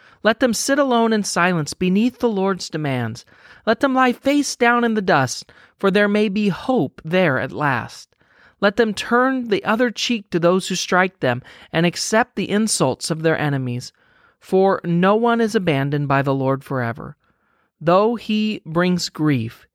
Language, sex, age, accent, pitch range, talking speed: English, male, 40-59, American, 160-230 Hz, 175 wpm